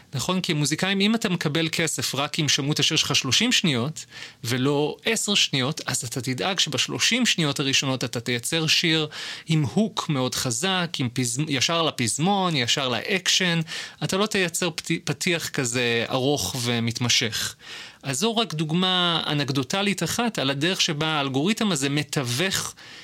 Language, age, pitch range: Hebrew, 30-49, 130-175 Hz